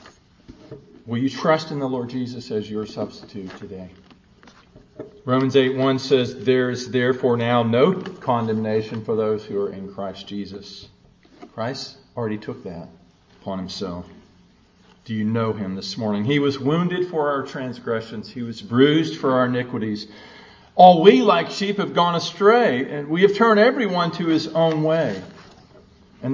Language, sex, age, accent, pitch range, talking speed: English, male, 50-69, American, 105-150 Hz, 155 wpm